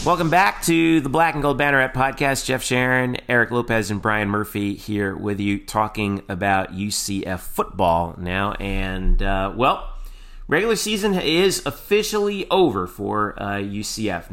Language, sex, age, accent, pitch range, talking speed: English, male, 30-49, American, 100-130 Hz, 150 wpm